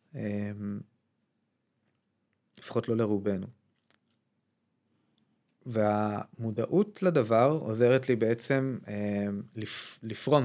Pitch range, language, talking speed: 115-140 Hz, Hebrew, 70 wpm